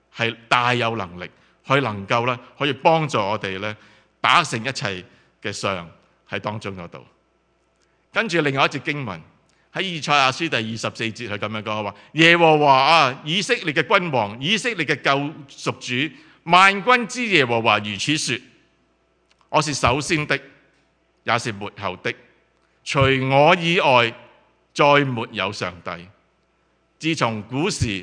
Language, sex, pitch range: English, male, 110-160 Hz